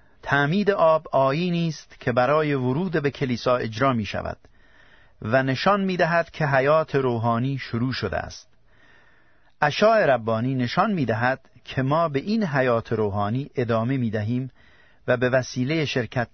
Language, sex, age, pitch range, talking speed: Persian, male, 50-69, 115-145 Hz, 145 wpm